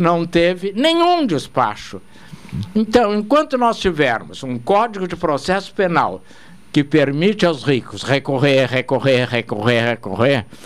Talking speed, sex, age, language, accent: 120 wpm, male, 60-79, Portuguese, Brazilian